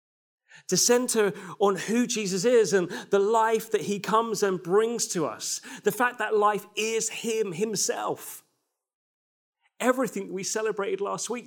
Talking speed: 145 wpm